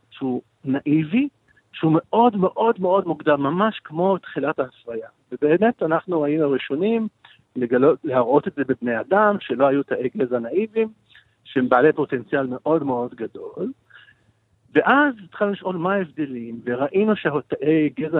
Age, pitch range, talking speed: 50-69, 125-180 Hz, 130 wpm